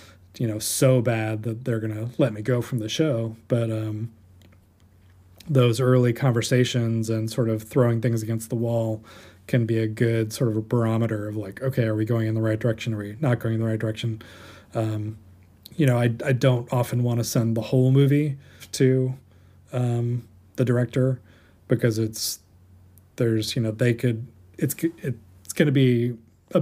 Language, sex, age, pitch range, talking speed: English, male, 20-39, 110-125 Hz, 185 wpm